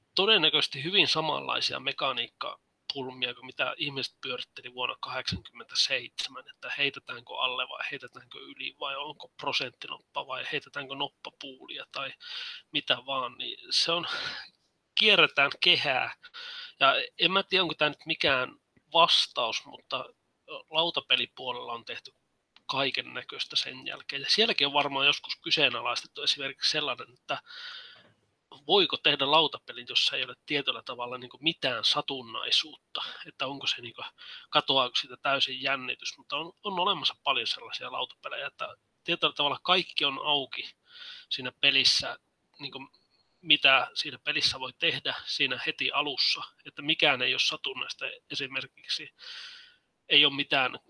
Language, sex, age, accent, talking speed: Finnish, male, 30-49, native, 130 wpm